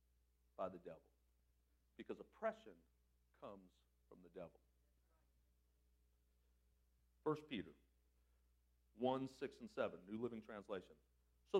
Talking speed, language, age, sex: 100 wpm, English, 50-69, male